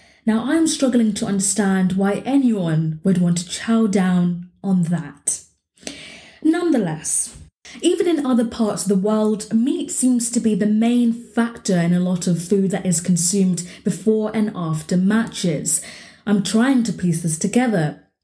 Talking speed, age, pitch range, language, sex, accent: 155 wpm, 20-39, 175-245 Hz, English, female, British